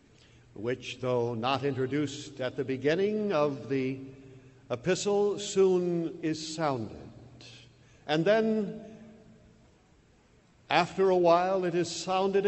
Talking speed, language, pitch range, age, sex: 100 wpm, English, 135-195 Hz, 60-79, male